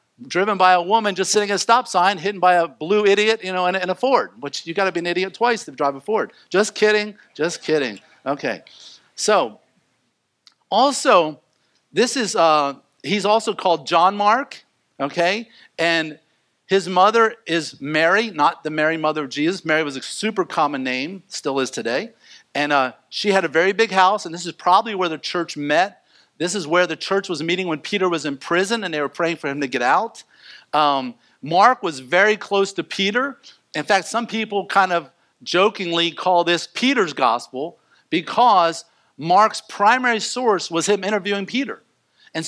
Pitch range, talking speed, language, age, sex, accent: 160-210 Hz, 185 wpm, English, 50-69, male, American